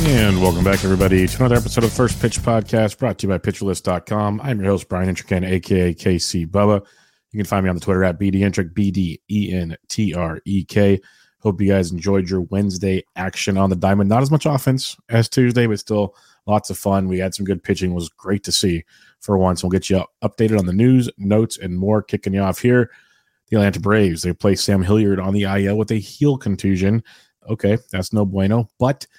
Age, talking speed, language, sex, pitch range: 30-49, 210 wpm, English, male, 95-105 Hz